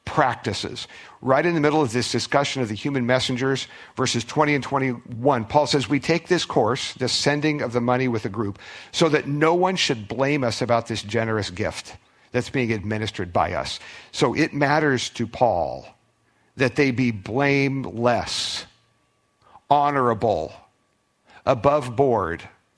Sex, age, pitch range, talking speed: male, 50-69, 115-140 Hz, 155 wpm